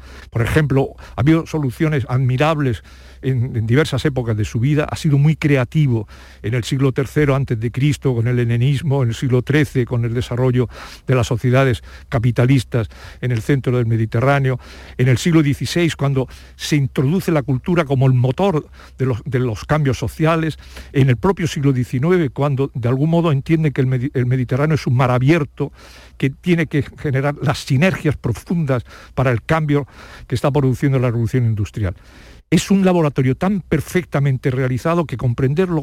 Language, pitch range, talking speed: Spanish, 120-155 Hz, 165 wpm